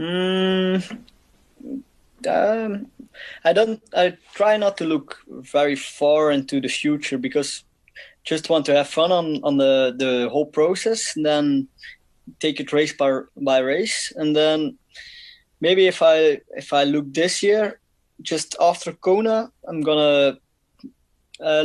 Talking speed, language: 140 wpm, English